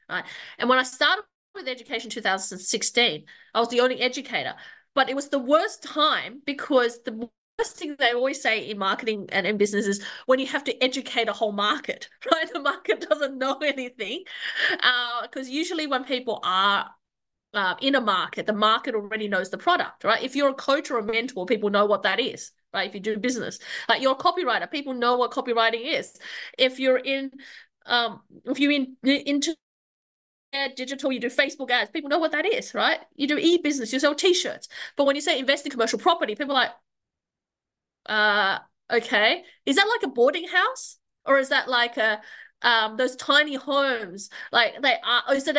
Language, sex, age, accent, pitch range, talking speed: English, female, 30-49, Australian, 235-305 Hz, 195 wpm